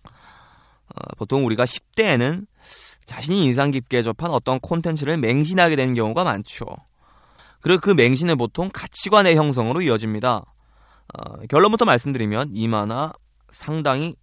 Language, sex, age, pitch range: Korean, male, 20-39, 115-170 Hz